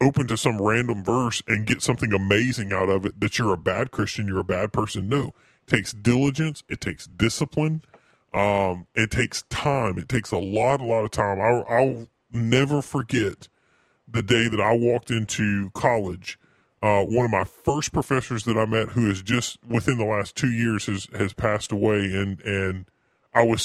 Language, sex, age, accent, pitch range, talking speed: English, female, 40-59, American, 100-125 Hz, 195 wpm